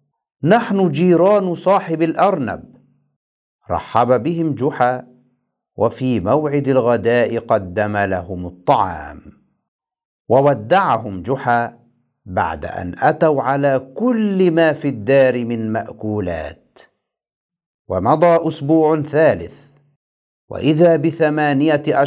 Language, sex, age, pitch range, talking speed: Arabic, male, 50-69, 120-170 Hz, 80 wpm